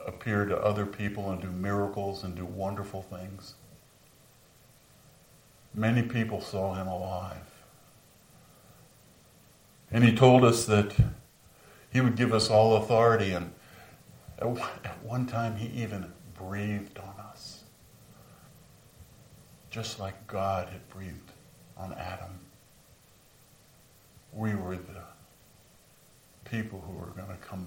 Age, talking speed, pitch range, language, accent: 50-69, 115 wpm, 90-110 Hz, English, American